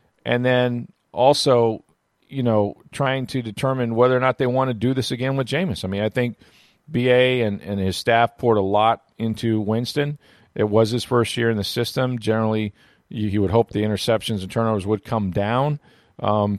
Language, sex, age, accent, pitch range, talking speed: English, male, 40-59, American, 105-130 Hz, 190 wpm